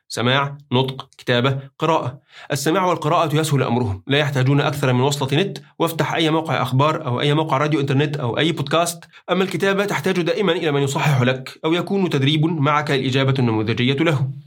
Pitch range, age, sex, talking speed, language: 130-155 Hz, 30-49, male, 170 wpm, Arabic